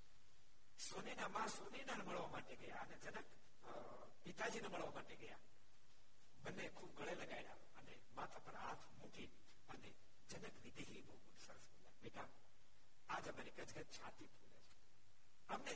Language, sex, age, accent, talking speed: Gujarati, male, 60-79, native, 105 wpm